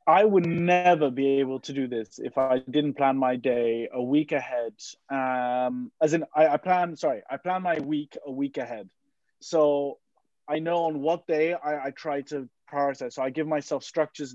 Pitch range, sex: 130-155 Hz, male